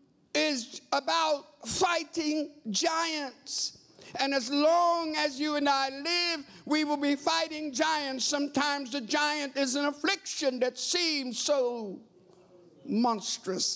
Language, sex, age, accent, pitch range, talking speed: English, male, 60-79, American, 255-320 Hz, 120 wpm